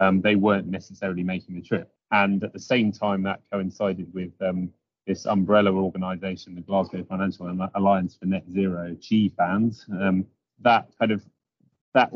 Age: 30-49